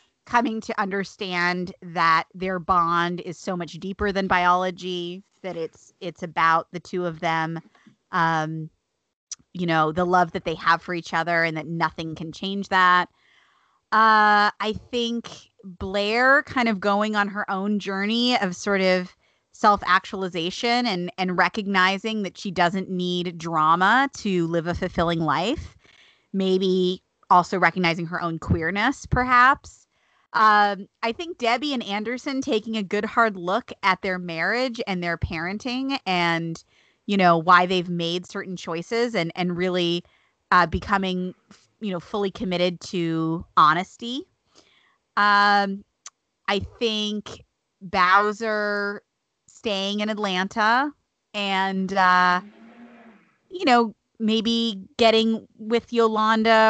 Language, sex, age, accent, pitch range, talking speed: English, female, 20-39, American, 175-215 Hz, 130 wpm